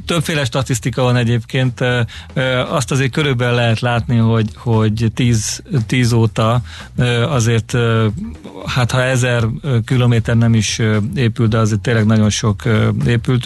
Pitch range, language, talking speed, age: 115-125 Hz, Hungarian, 130 wpm, 40-59